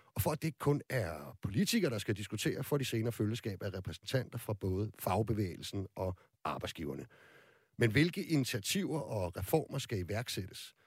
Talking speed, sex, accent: 155 wpm, male, native